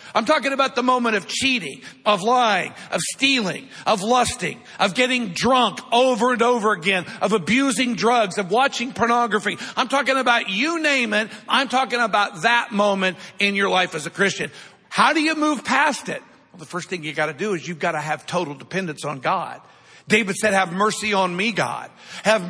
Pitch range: 190-245 Hz